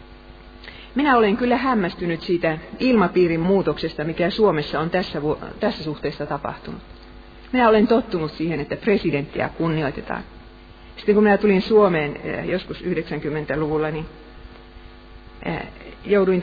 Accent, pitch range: native, 140-205 Hz